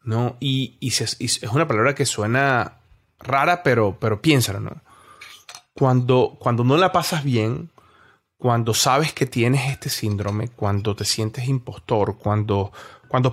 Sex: male